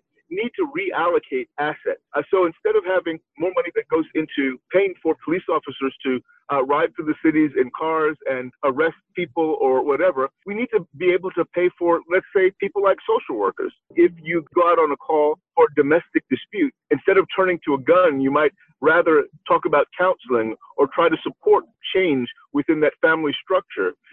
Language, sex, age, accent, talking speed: English, male, 50-69, American, 190 wpm